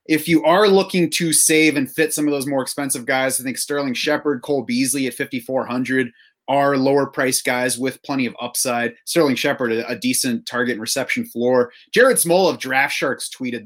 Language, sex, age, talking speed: English, male, 30-49, 185 wpm